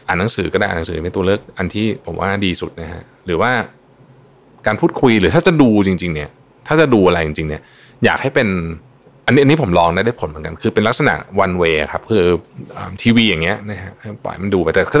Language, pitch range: Thai, 90-120 Hz